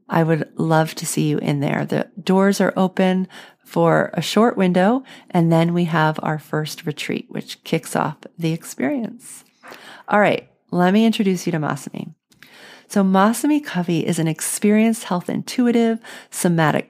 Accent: American